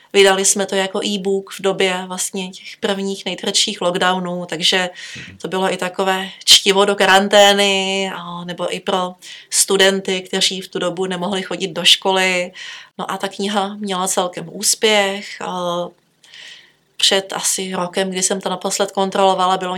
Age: 30-49